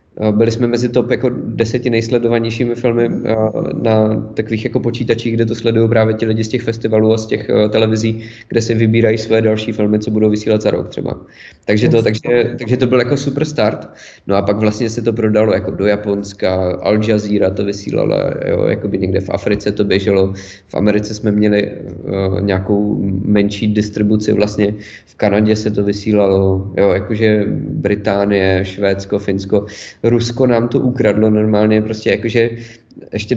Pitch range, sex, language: 105-120 Hz, male, Czech